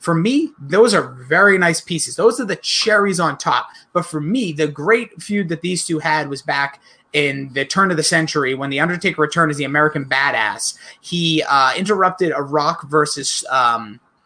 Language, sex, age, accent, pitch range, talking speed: English, male, 30-49, American, 150-185 Hz, 195 wpm